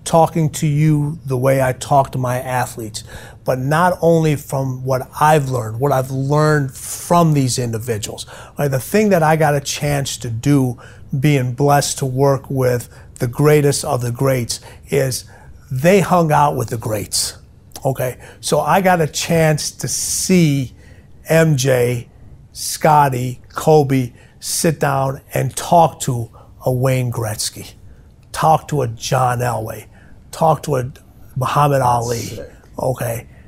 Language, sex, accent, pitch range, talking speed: English, male, American, 125-155 Hz, 140 wpm